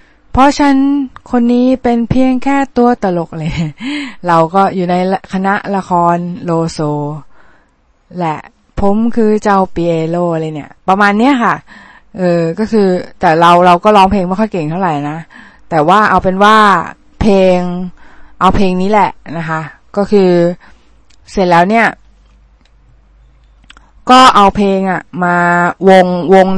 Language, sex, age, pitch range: Thai, female, 20-39, 175-215 Hz